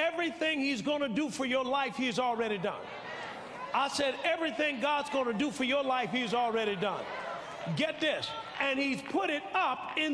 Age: 40-59